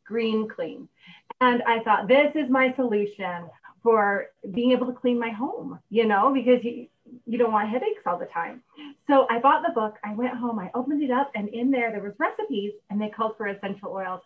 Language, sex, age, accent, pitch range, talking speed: English, female, 30-49, American, 210-270 Hz, 215 wpm